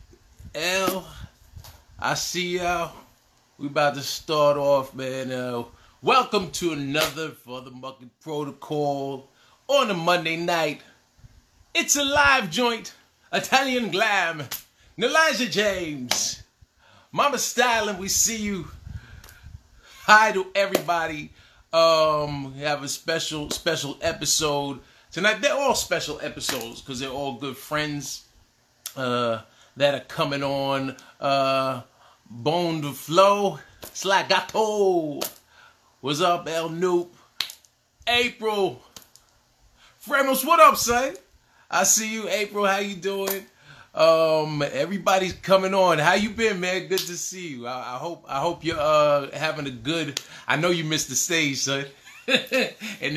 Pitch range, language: 135-195 Hz, English